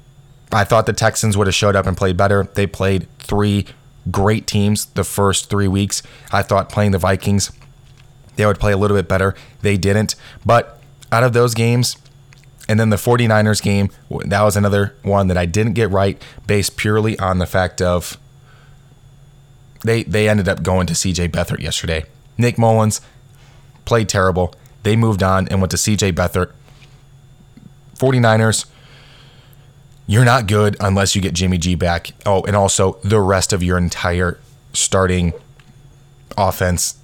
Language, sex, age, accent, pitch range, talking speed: English, male, 20-39, American, 95-130 Hz, 160 wpm